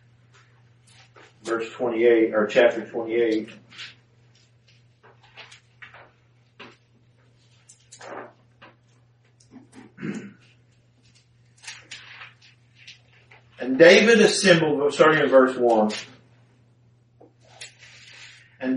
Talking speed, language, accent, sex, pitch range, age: 40 wpm, English, American, male, 120-175 Hz, 40-59